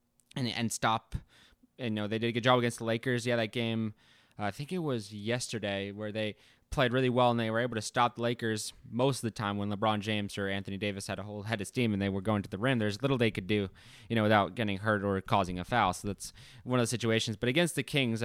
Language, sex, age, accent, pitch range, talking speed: English, male, 20-39, American, 105-125 Hz, 265 wpm